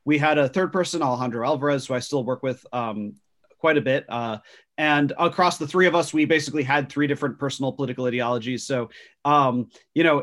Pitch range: 125-150 Hz